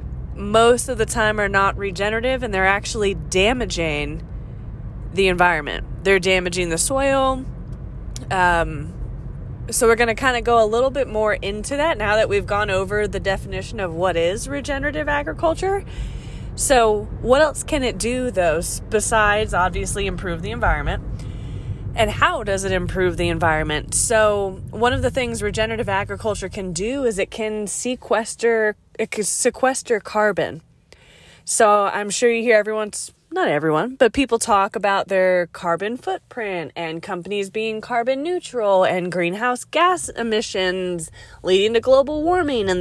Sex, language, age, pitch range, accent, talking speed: female, English, 20-39, 185-245 Hz, American, 150 wpm